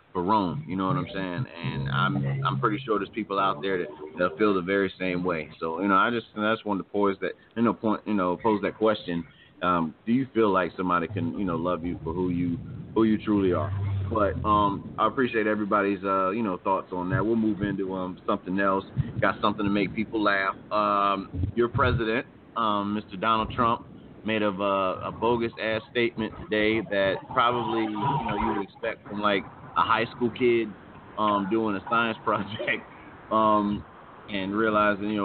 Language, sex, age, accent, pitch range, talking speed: English, male, 30-49, American, 95-125 Hz, 205 wpm